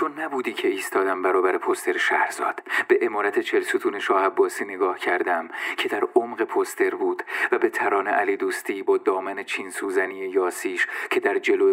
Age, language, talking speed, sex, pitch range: 40-59, Persian, 165 wpm, male, 370-395 Hz